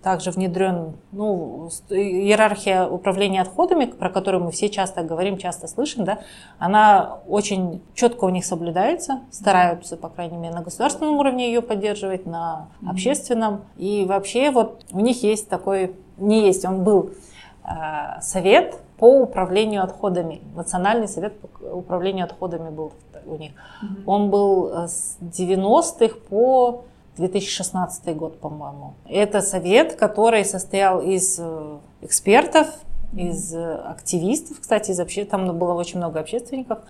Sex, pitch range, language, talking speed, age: female, 175-215 Hz, Russian, 130 wpm, 30-49